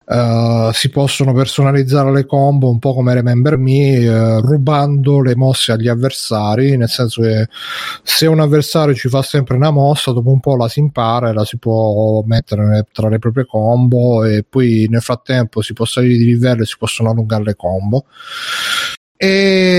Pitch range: 120-145 Hz